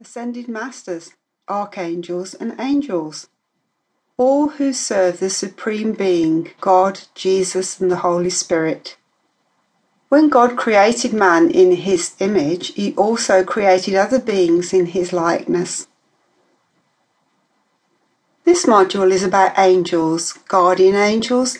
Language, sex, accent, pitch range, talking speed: English, female, British, 180-235 Hz, 110 wpm